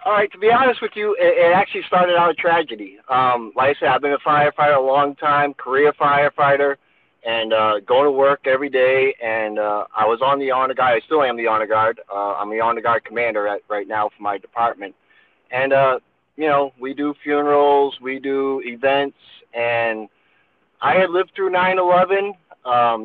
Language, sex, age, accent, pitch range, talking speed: English, male, 30-49, American, 120-160 Hz, 200 wpm